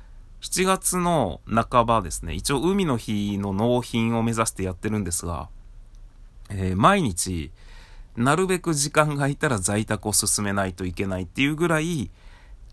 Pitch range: 95-120 Hz